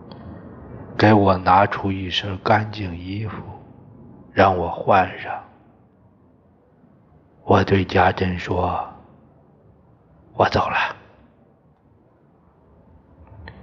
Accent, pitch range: native, 90-110 Hz